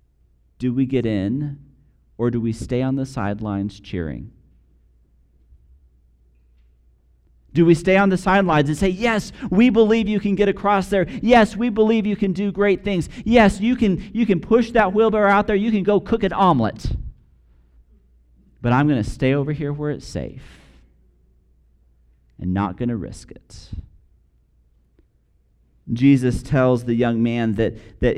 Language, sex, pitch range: English, male, 100-155 Hz